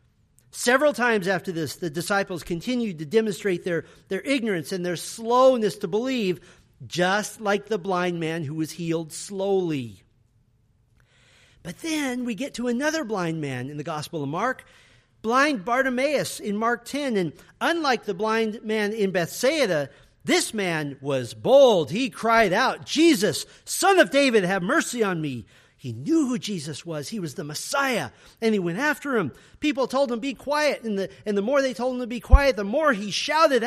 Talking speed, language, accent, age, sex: 180 wpm, English, American, 50-69, male